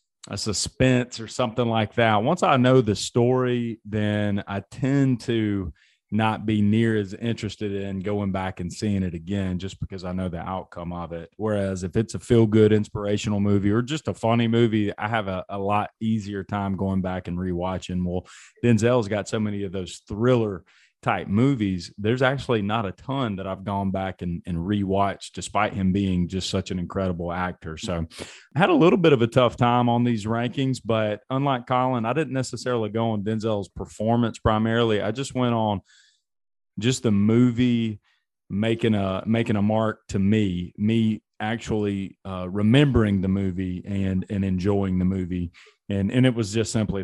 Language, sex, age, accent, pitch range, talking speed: English, male, 30-49, American, 95-115 Hz, 185 wpm